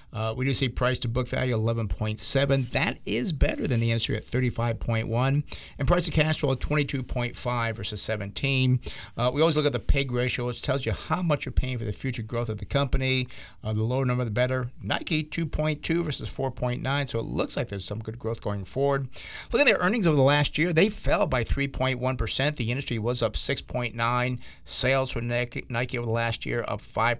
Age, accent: 50-69, American